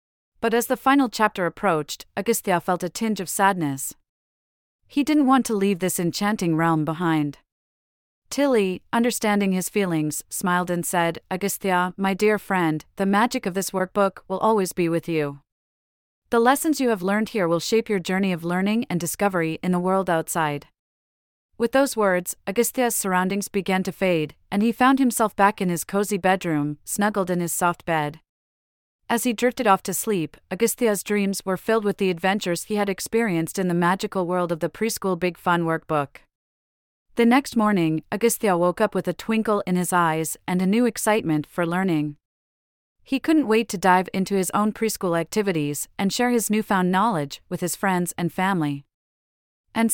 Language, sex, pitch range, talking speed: English, female, 165-215 Hz, 175 wpm